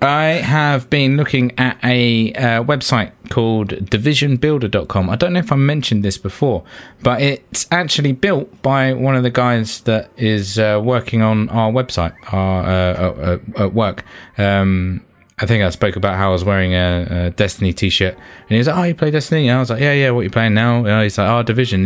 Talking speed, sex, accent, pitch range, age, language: 215 wpm, male, British, 95-130 Hz, 20-39, English